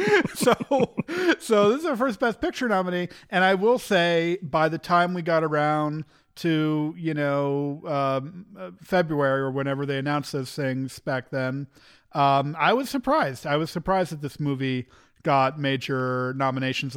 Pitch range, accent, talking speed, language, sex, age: 140-180 Hz, American, 160 wpm, English, male, 50-69